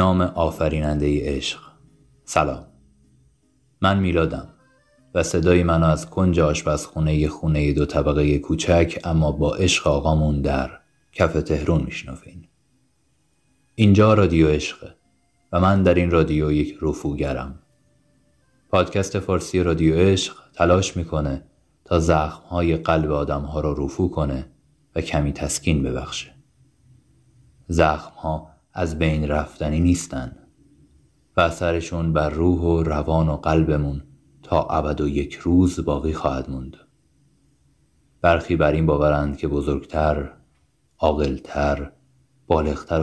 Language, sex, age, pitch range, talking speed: Persian, male, 30-49, 75-85 Hz, 120 wpm